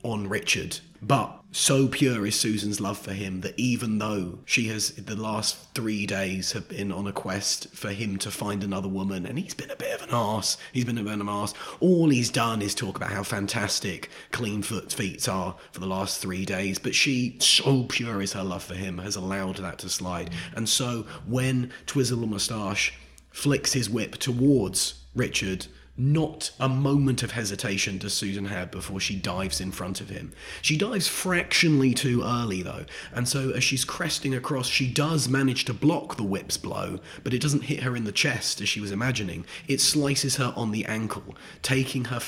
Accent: British